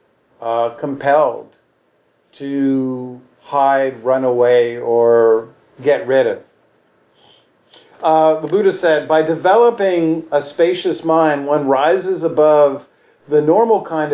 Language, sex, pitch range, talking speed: English, male, 130-165 Hz, 100 wpm